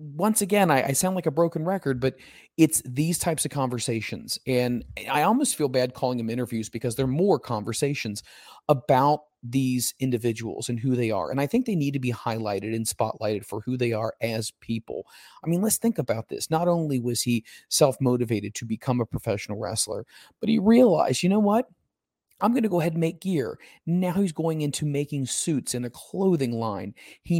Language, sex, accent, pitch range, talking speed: English, male, American, 115-155 Hz, 200 wpm